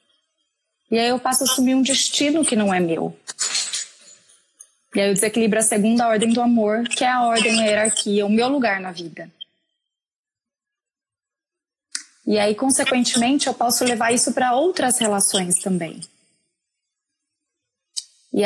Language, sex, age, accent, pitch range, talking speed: Portuguese, female, 20-39, Brazilian, 195-255 Hz, 145 wpm